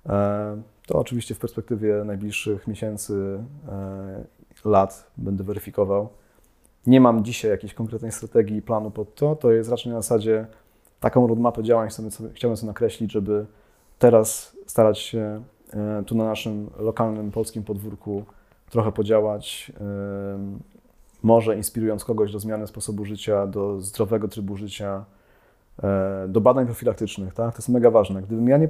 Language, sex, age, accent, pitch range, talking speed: Polish, male, 30-49, native, 105-120 Hz, 135 wpm